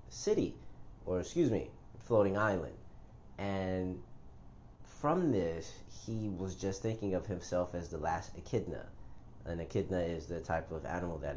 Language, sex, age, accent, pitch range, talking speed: English, male, 30-49, American, 85-100 Hz, 140 wpm